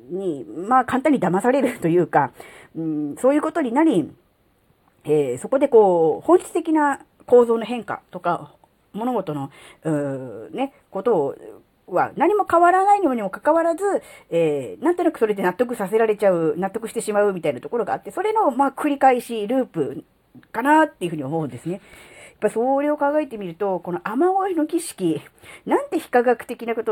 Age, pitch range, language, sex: 40-59, 170-280 Hz, Japanese, female